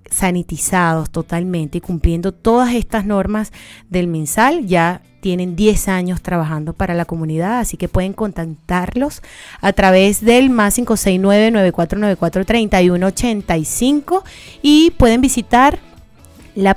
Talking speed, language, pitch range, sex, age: 105 wpm, Spanish, 180-235 Hz, female, 30-49